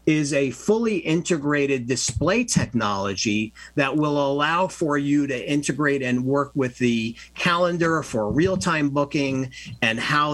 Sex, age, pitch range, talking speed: male, 50-69, 125-145 Hz, 135 wpm